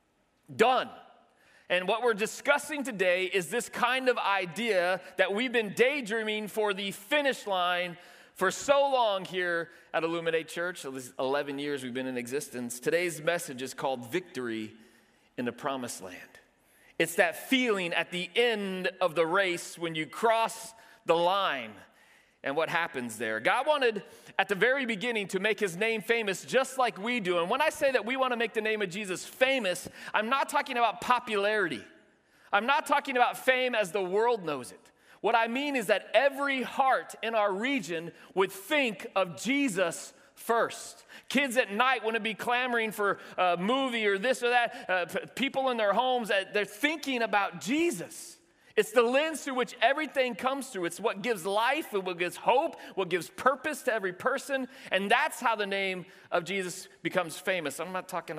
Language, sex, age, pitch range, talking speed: English, male, 30-49, 170-245 Hz, 180 wpm